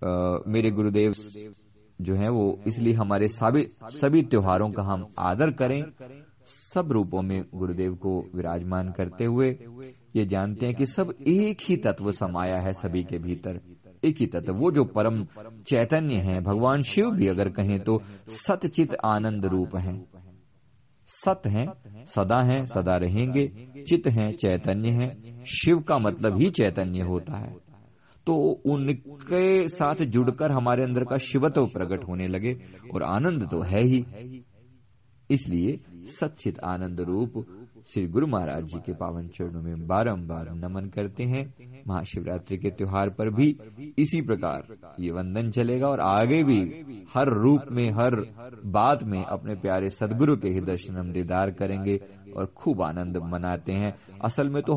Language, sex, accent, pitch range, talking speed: Hindi, male, native, 95-130 Hz, 150 wpm